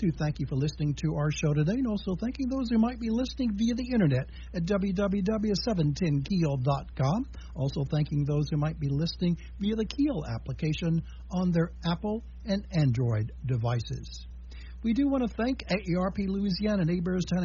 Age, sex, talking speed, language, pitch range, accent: 60-79, male, 160 wpm, English, 125-195 Hz, American